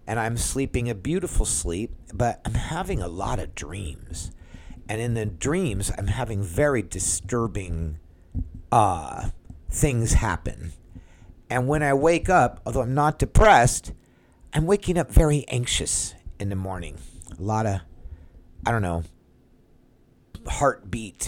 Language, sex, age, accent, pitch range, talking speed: English, male, 50-69, American, 90-130 Hz, 135 wpm